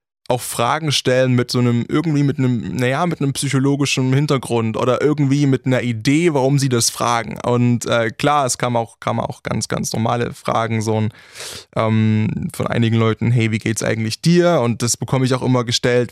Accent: German